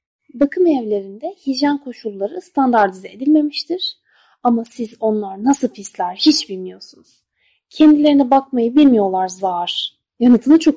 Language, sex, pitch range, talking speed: Turkish, female, 210-320 Hz, 105 wpm